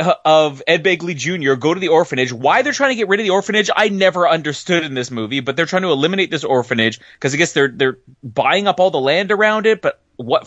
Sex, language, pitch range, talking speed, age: male, English, 140-230 Hz, 250 wpm, 30-49